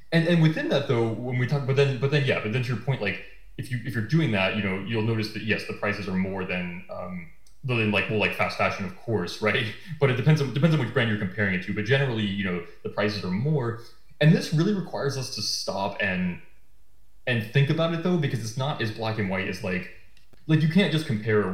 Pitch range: 100-135 Hz